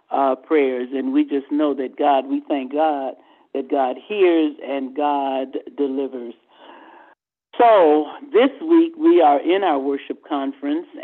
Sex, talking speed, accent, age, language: male, 140 wpm, American, 50-69, English